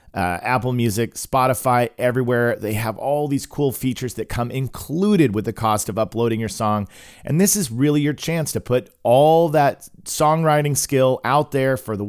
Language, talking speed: English, 185 wpm